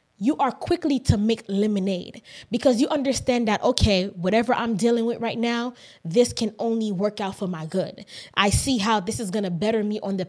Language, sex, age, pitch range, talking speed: English, female, 20-39, 200-260 Hz, 210 wpm